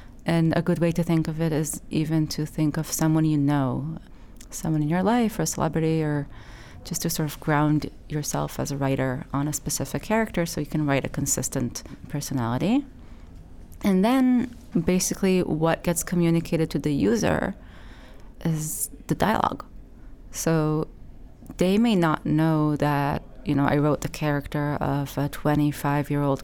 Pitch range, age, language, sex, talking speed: 145-170 Hz, 30-49, English, female, 160 wpm